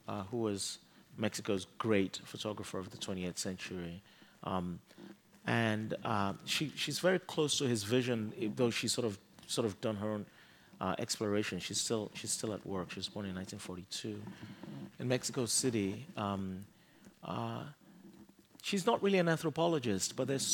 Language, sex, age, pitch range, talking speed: English, male, 30-49, 100-125 Hz, 160 wpm